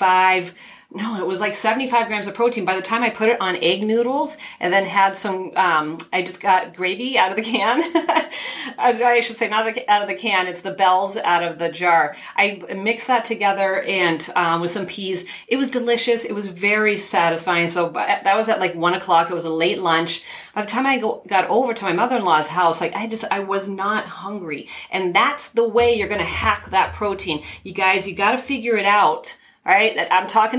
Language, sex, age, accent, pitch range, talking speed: English, female, 40-59, American, 180-225 Hz, 225 wpm